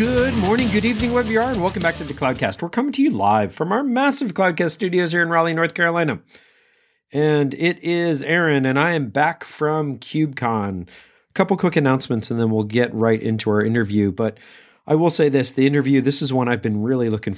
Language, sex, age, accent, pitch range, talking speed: English, male, 40-59, American, 120-170 Hz, 220 wpm